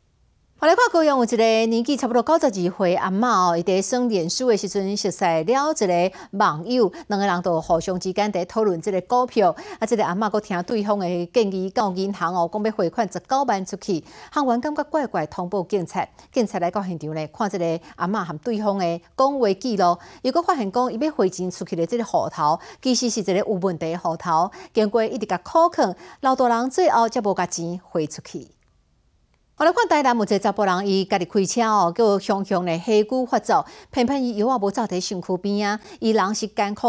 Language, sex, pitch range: Chinese, female, 185-240 Hz